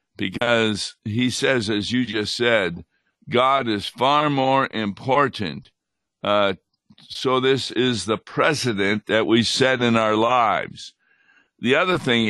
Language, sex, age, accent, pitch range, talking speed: English, male, 60-79, American, 110-130 Hz, 130 wpm